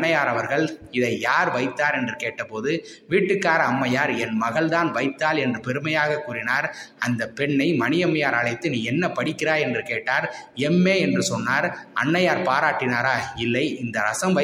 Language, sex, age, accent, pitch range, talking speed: Tamil, male, 20-39, native, 125-165 Hz, 65 wpm